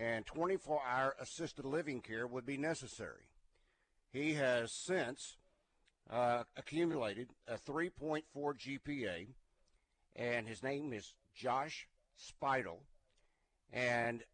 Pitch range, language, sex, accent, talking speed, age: 115-150 Hz, English, male, American, 95 wpm, 60-79